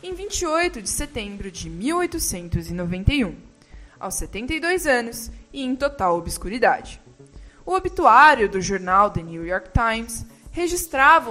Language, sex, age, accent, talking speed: Portuguese, female, 20-39, Brazilian, 115 wpm